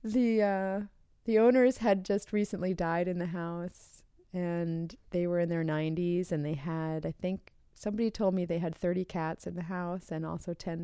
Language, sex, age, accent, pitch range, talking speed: English, female, 30-49, American, 170-230 Hz, 195 wpm